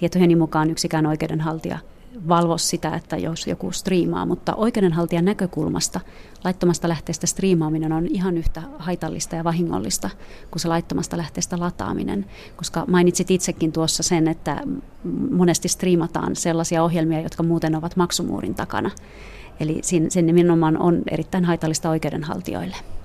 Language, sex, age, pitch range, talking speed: Finnish, female, 30-49, 160-175 Hz, 130 wpm